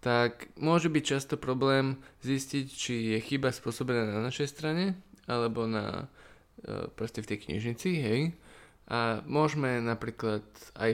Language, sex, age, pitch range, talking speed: Slovak, male, 20-39, 110-135 Hz, 135 wpm